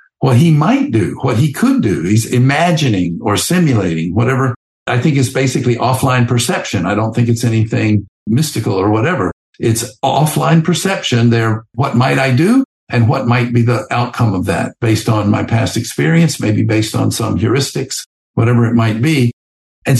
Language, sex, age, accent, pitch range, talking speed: English, male, 50-69, American, 110-130 Hz, 175 wpm